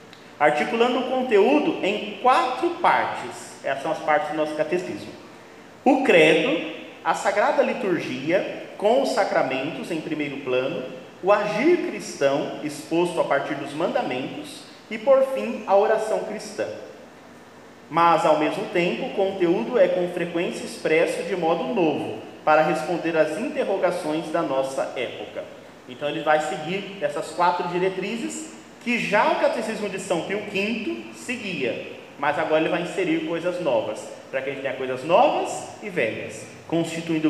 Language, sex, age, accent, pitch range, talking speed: Portuguese, male, 30-49, Brazilian, 155-220 Hz, 145 wpm